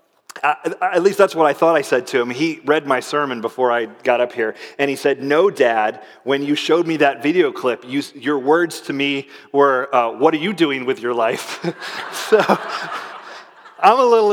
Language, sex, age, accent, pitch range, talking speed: English, male, 30-49, American, 120-160 Hz, 210 wpm